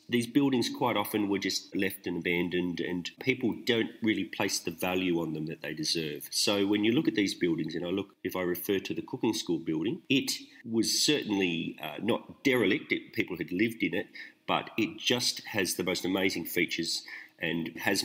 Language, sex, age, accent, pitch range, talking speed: English, male, 40-59, Australian, 85-110 Hz, 205 wpm